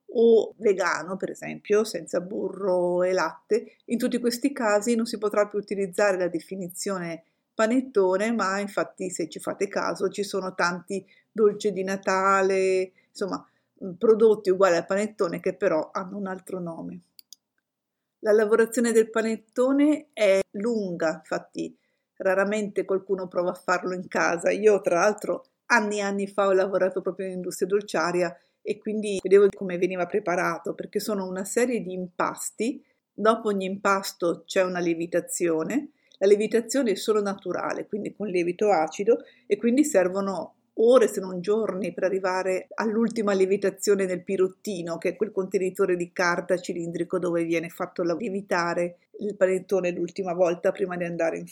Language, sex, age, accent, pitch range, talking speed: Italian, female, 50-69, native, 180-215 Hz, 150 wpm